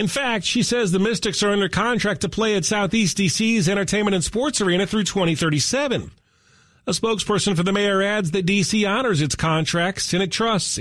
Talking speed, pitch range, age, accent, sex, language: 185 wpm, 155-205 Hz, 40-59, American, male, English